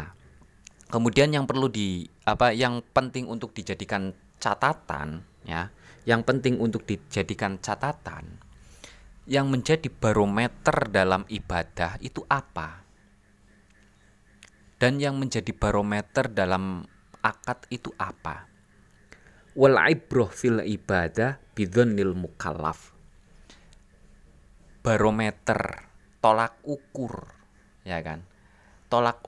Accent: native